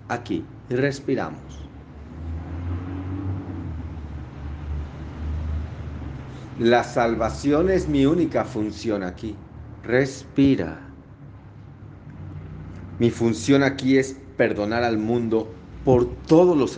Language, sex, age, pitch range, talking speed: Spanish, male, 40-59, 90-125 Hz, 75 wpm